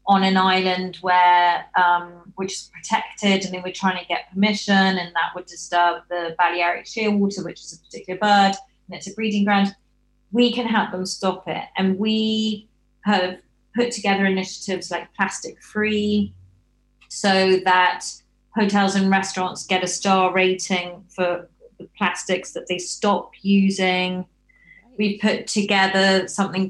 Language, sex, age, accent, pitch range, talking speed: English, female, 30-49, British, 175-200 Hz, 150 wpm